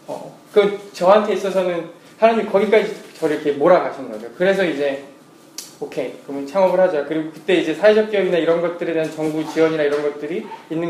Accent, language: native, Korean